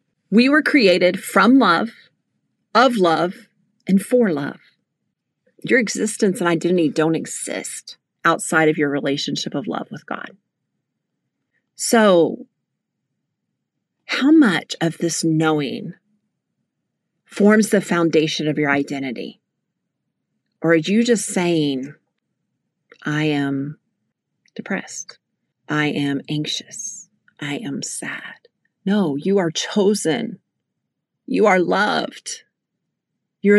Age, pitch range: 40-59, 165-230 Hz